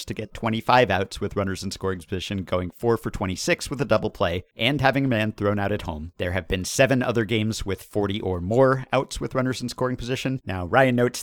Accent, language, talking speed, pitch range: American, English, 235 wpm, 95-140 Hz